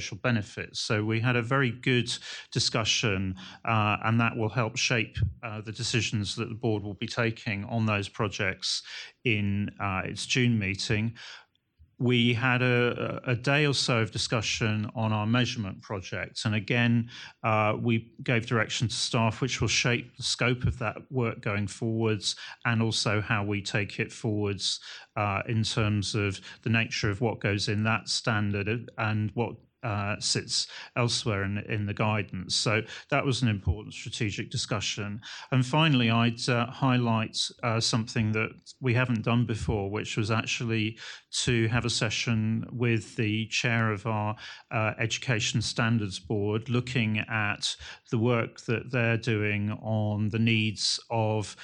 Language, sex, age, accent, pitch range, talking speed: English, male, 40-59, British, 105-120 Hz, 160 wpm